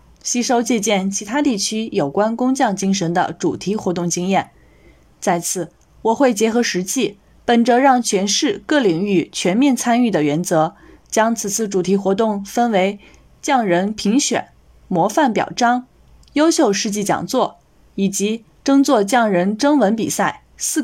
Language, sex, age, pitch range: Chinese, female, 20-39, 195-255 Hz